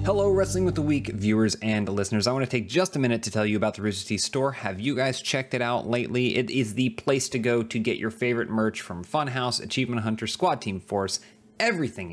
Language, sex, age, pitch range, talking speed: English, male, 30-49, 100-120 Hz, 240 wpm